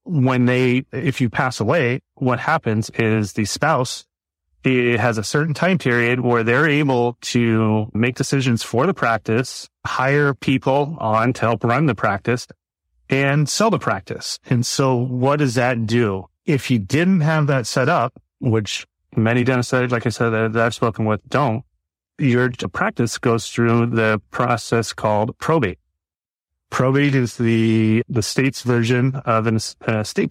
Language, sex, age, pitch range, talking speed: English, male, 30-49, 110-135 Hz, 155 wpm